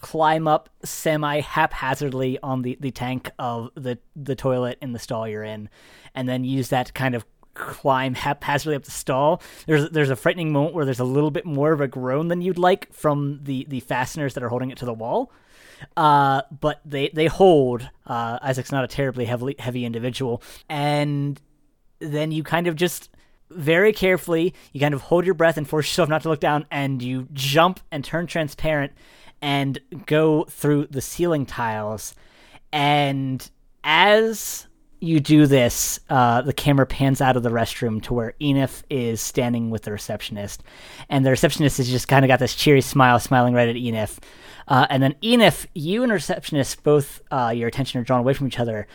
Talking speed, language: 190 wpm, English